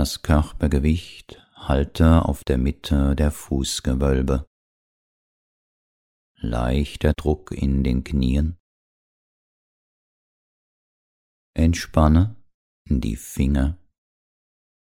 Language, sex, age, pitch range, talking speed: German, male, 40-59, 65-75 Hz, 65 wpm